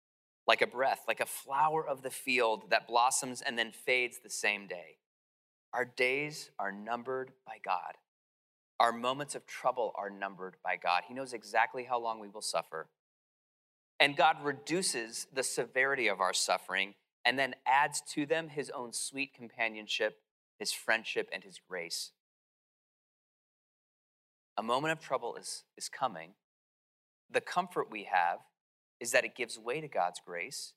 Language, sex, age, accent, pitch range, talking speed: English, male, 30-49, American, 105-140 Hz, 155 wpm